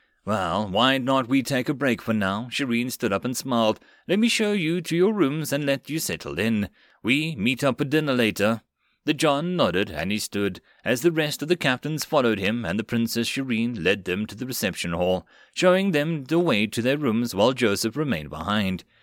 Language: English